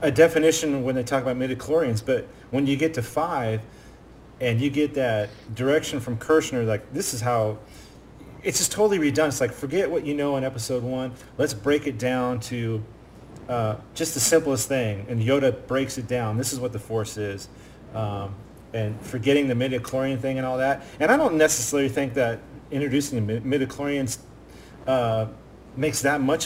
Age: 40-59